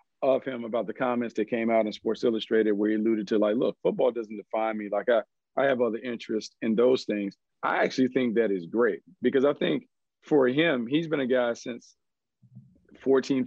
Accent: American